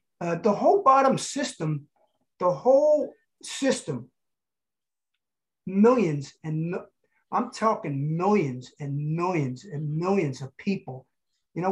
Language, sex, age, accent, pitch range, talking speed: English, male, 50-69, American, 160-220 Hz, 110 wpm